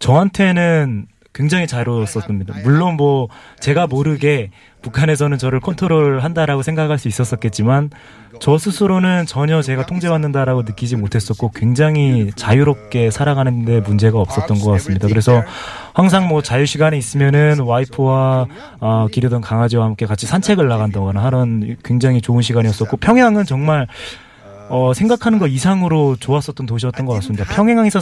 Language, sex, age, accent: Korean, male, 20-39, native